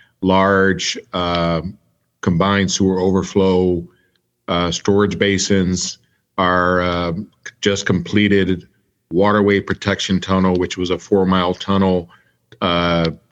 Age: 50-69